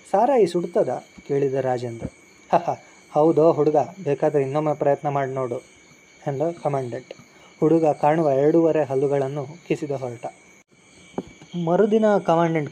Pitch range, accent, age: 135-165 Hz, native, 20-39